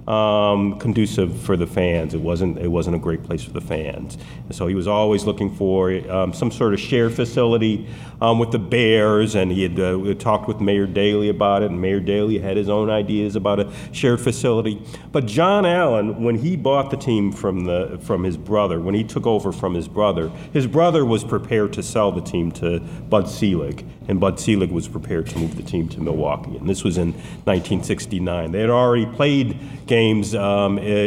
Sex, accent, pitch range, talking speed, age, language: male, American, 100-130 Hz, 210 wpm, 50-69, English